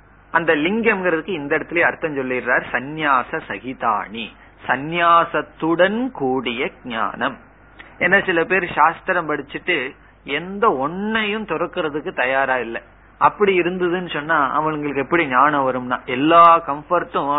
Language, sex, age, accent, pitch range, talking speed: Tamil, male, 30-49, native, 135-170 Hz, 95 wpm